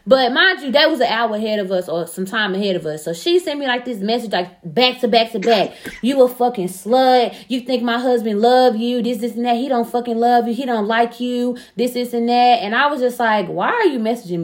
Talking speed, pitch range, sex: 270 wpm, 225-285 Hz, female